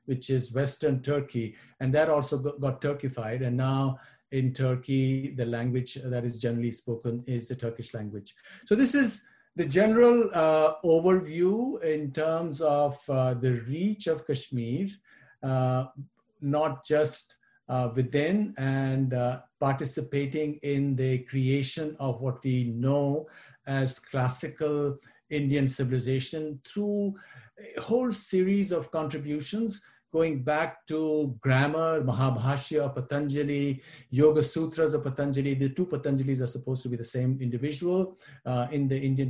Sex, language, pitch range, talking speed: male, English, 130-155 Hz, 135 wpm